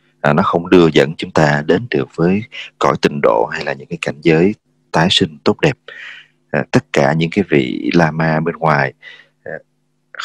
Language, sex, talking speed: English, male, 200 wpm